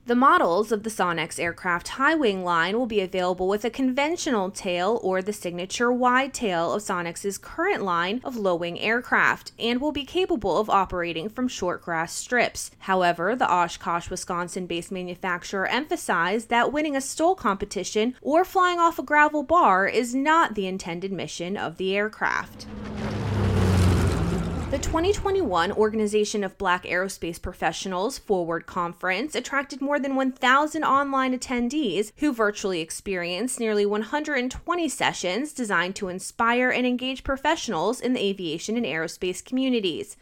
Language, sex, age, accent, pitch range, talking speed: English, female, 20-39, American, 185-265 Hz, 140 wpm